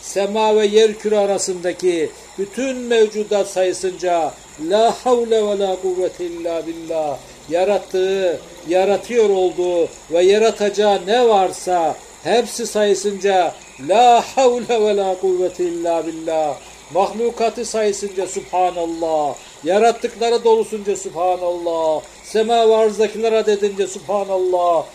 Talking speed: 95 wpm